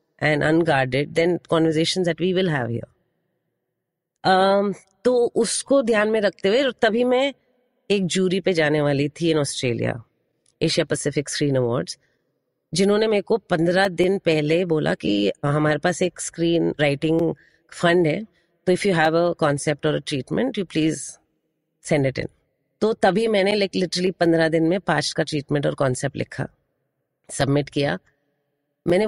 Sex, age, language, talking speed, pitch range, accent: female, 30-49, Hindi, 150 wpm, 150-190 Hz, native